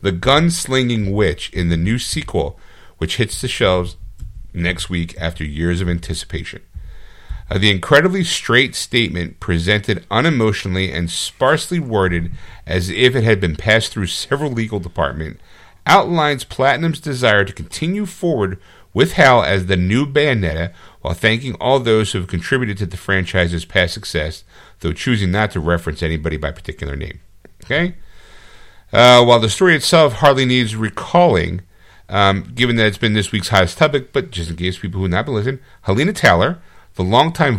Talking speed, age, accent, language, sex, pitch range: 165 wpm, 50-69, American, English, male, 90-125 Hz